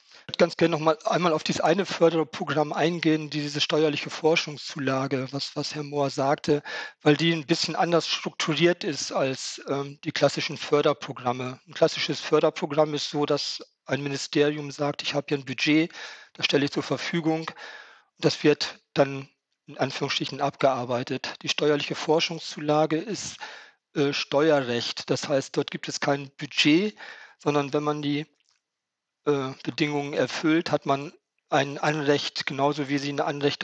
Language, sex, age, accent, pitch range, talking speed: German, male, 40-59, German, 140-155 Hz, 150 wpm